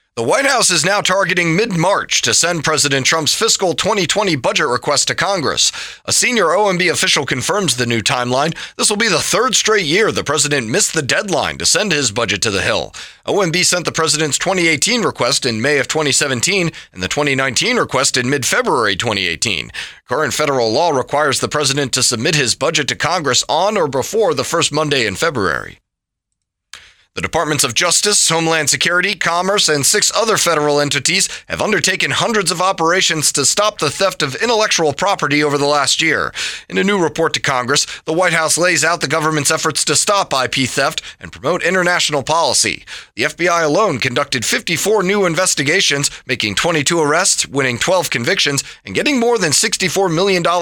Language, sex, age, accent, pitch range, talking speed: English, male, 30-49, American, 145-185 Hz, 180 wpm